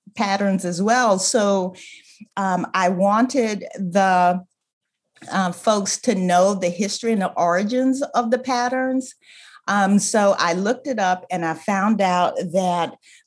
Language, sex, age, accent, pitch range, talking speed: English, female, 40-59, American, 180-230 Hz, 140 wpm